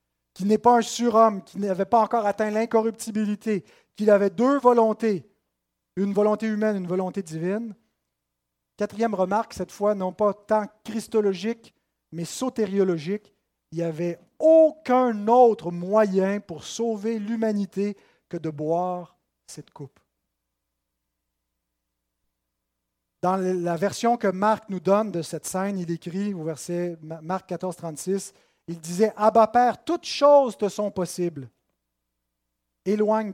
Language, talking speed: French, 135 wpm